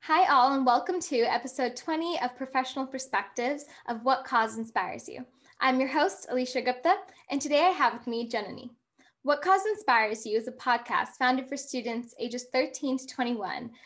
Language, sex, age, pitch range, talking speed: English, female, 10-29, 240-290 Hz, 180 wpm